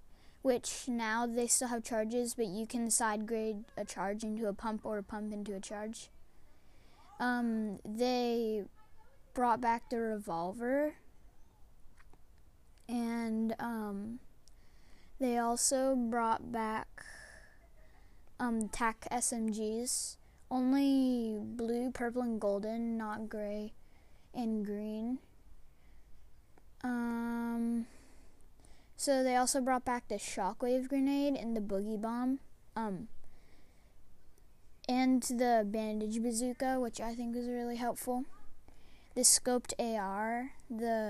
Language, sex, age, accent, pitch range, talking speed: English, female, 10-29, American, 215-255 Hz, 110 wpm